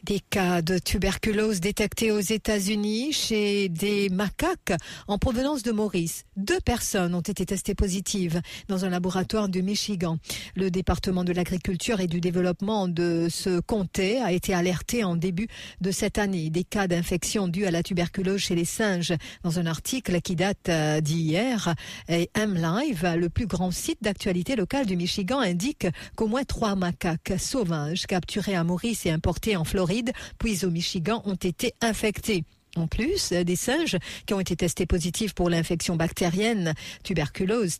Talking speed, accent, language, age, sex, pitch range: 160 wpm, French, English, 50-69, female, 175-210 Hz